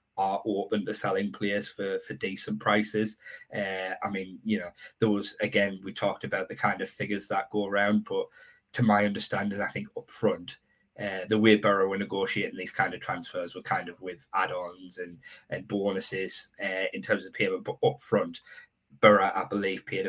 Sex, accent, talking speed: male, British, 190 wpm